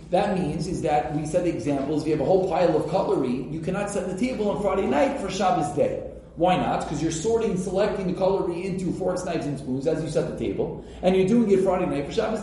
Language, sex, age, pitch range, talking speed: English, male, 30-49, 165-225 Hz, 245 wpm